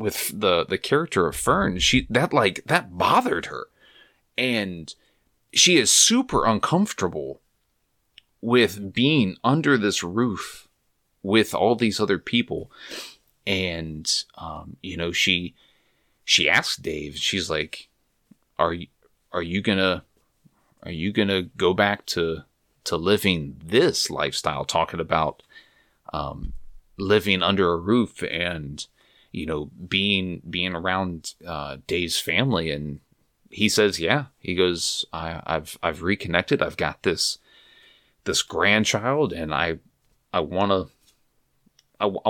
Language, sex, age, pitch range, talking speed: English, male, 30-49, 85-110 Hz, 125 wpm